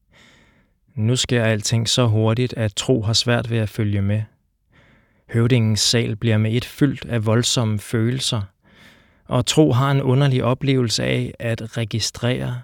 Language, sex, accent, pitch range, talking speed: Danish, male, native, 110-125 Hz, 145 wpm